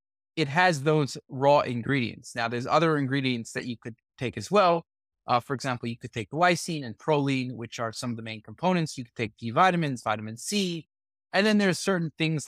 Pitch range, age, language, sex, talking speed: 120-165 Hz, 20-39, English, male, 205 wpm